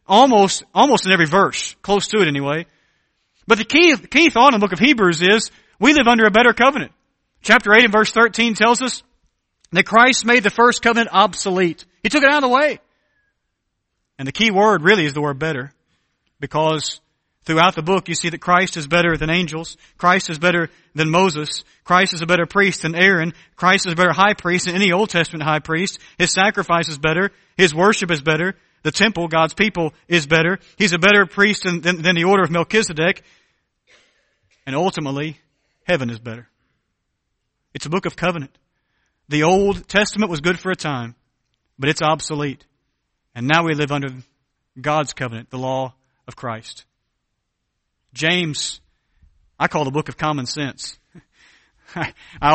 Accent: American